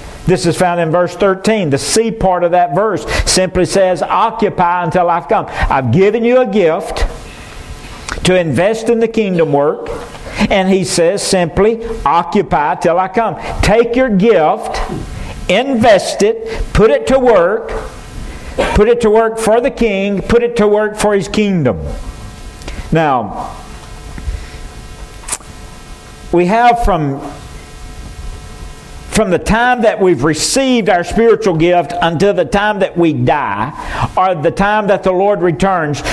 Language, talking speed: English, 145 wpm